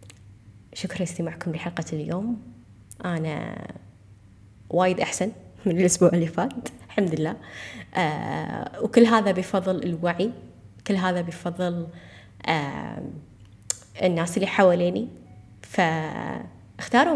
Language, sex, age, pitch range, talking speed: Arabic, female, 20-39, 150-195 Hz, 90 wpm